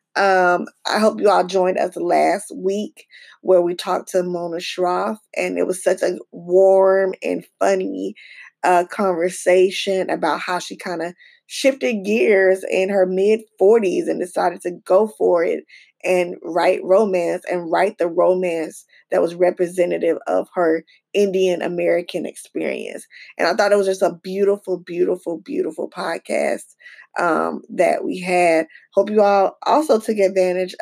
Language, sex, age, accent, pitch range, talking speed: English, female, 10-29, American, 180-200 Hz, 150 wpm